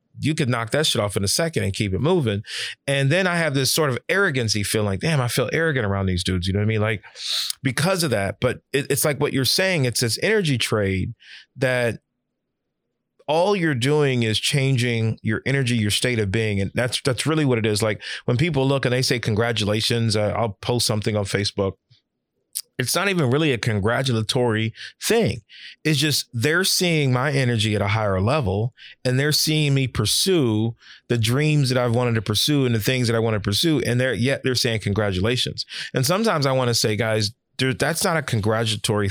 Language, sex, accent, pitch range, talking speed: English, male, American, 110-140 Hz, 210 wpm